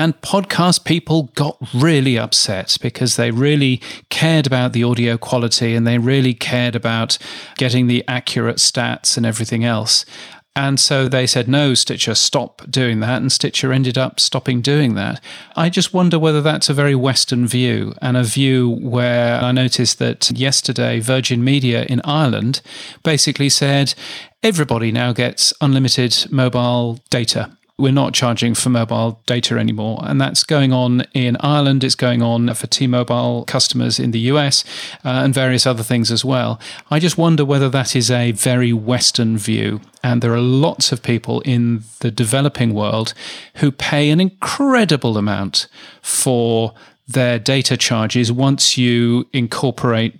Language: English